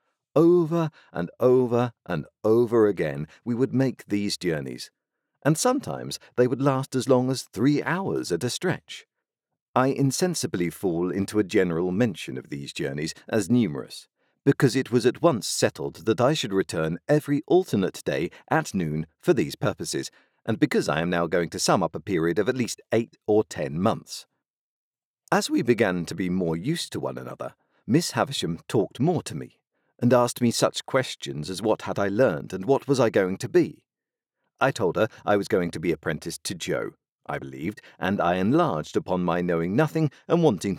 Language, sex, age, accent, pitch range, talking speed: English, male, 50-69, British, 95-145 Hz, 185 wpm